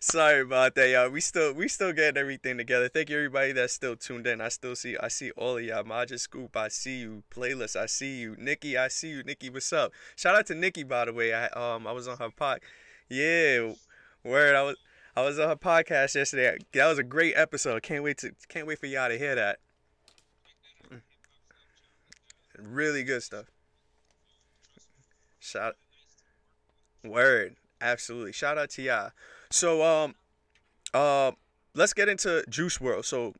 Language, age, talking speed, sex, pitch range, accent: English, 20-39, 180 wpm, male, 105-150 Hz, American